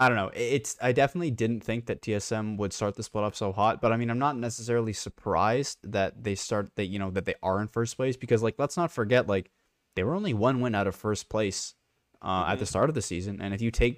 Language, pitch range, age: English, 100-120 Hz, 20-39